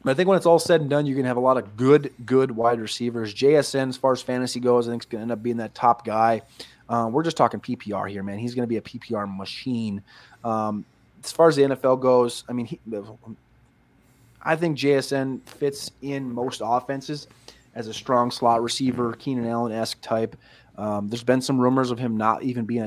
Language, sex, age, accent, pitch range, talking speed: English, male, 20-39, American, 115-135 Hz, 225 wpm